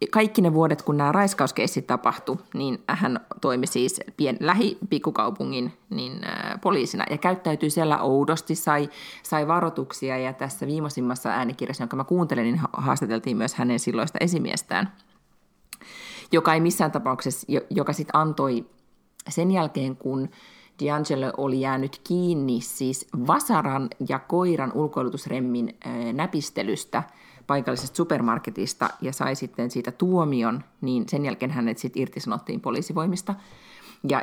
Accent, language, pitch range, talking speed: native, Finnish, 125-160 Hz, 120 wpm